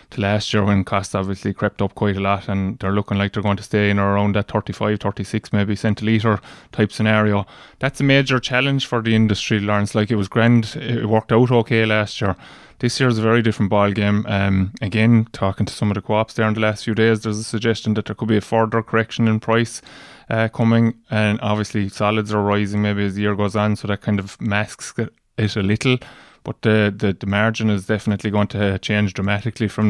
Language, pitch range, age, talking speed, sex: English, 100-110 Hz, 20-39, 225 wpm, male